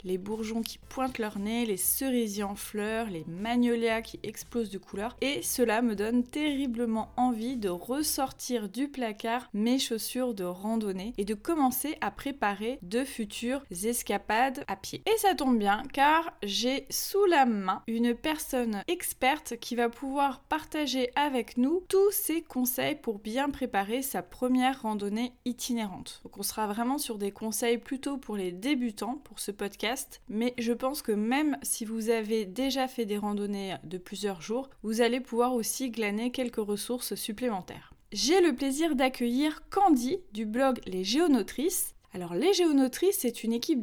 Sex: female